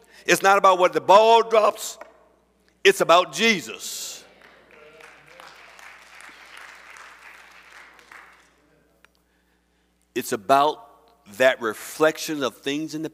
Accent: American